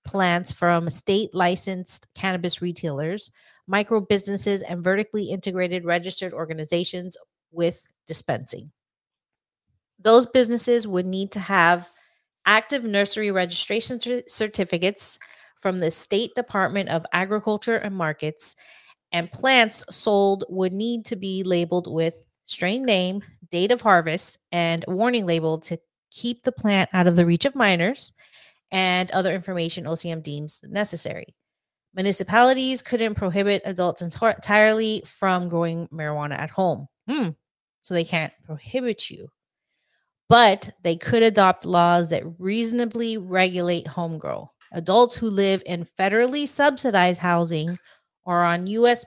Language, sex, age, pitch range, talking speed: English, female, 30-49, 170-215 Hz, 120 wpm